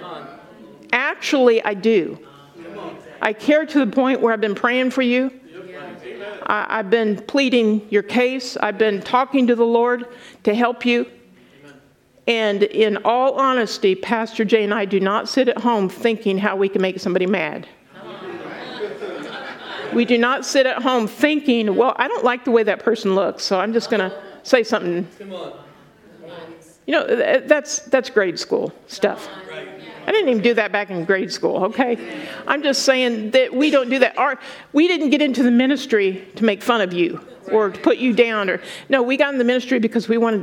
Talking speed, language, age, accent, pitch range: 180 wpm, English, 50-69, American, 205-265 Hz